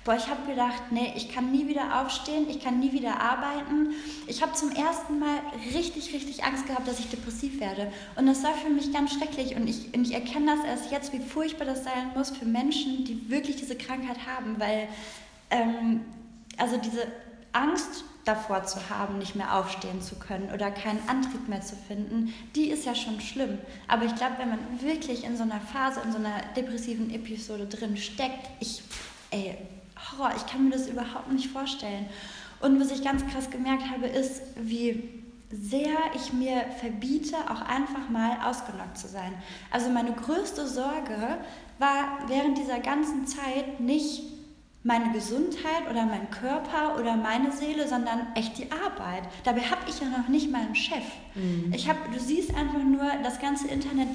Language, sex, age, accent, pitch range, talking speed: German, female, 20-39, German, 230-285 Hz, 180 wpm